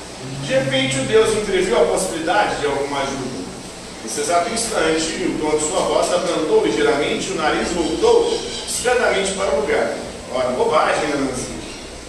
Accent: Brazilian